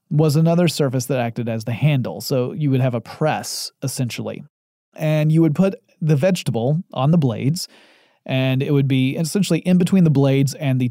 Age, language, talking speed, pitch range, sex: 30-49, English, 195 wpm, 125-165 Hz, male